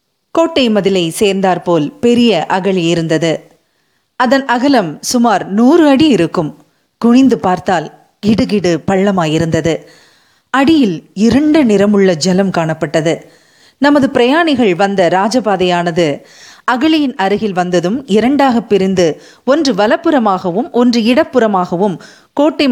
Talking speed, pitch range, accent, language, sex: 90 wpm, 180-265 Hz, native, Tamil, female